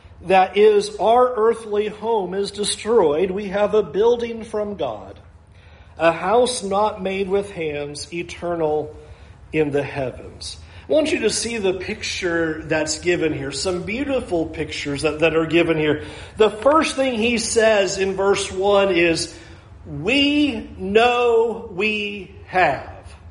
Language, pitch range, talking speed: English, 160-250 Hz, 140 wpm